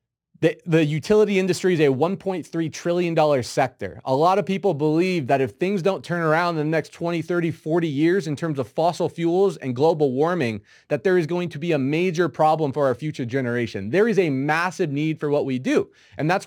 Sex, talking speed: male, 215 wpm